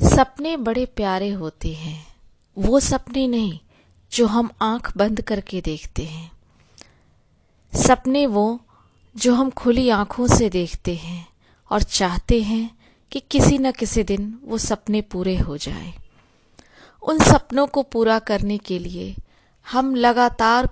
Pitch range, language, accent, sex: 180-240 Hz, Hindi, native, female